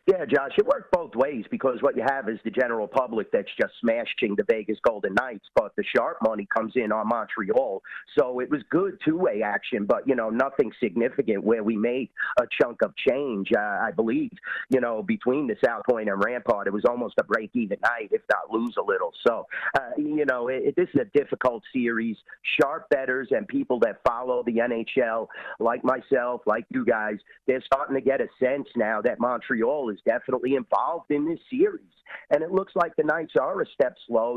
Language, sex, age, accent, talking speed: English, male, 40-59, American, 210 wpm